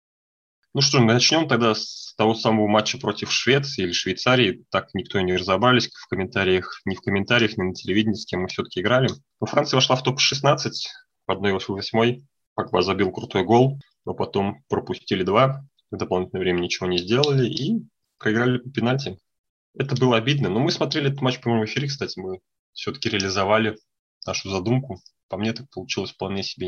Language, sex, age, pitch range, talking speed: Russian, male, 20-39, 95-130 Hz, 175 wpm